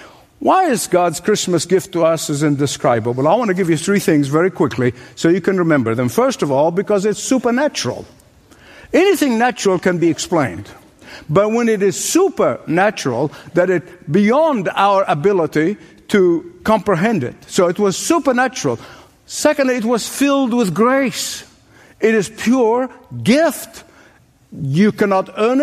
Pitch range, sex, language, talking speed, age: 170-235 Hz, male, English, 150 wpm, 60-79